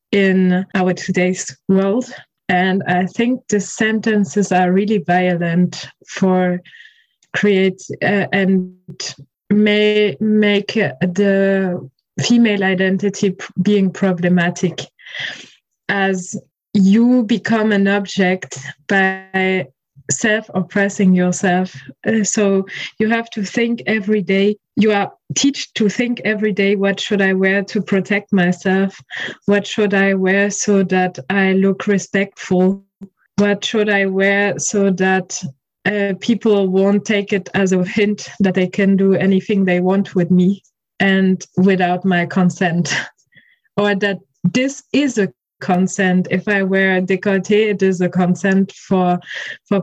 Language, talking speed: German, 130 wpm